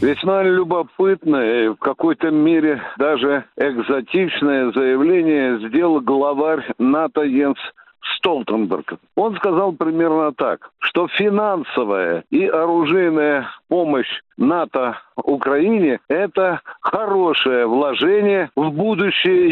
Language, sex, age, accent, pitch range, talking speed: Russian, male, 60-79, native, 165-220 Hz, 95 wpm